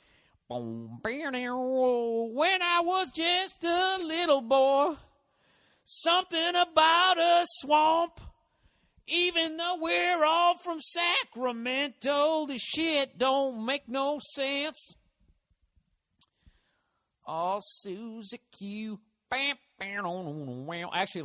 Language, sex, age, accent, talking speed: English, male, 50-69, American, 80 wpm